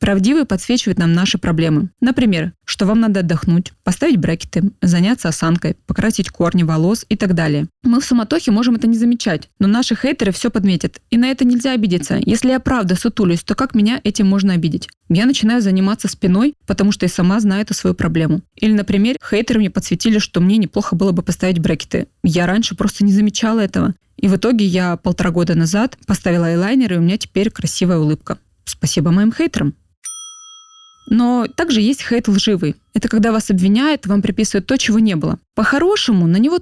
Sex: female